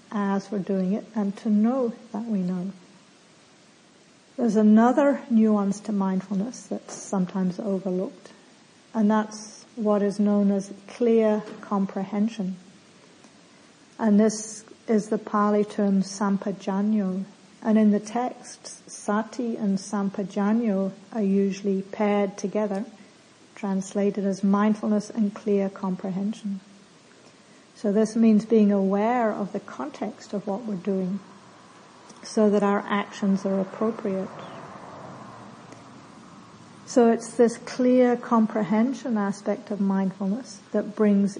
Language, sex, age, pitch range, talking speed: English, female, 50-69, 200-225 Hz, 115 wpm